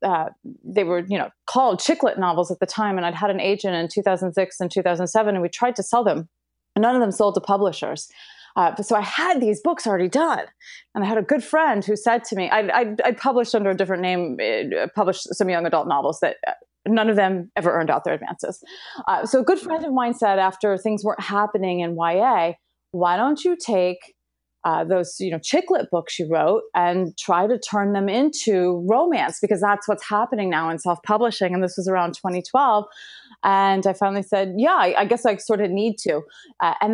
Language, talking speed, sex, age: English, 220 wpm, female, 30-49